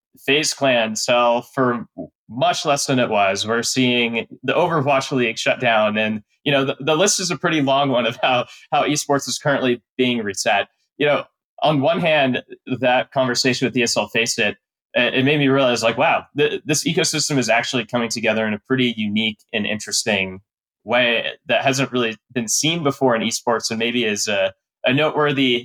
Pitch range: 115-140 Hz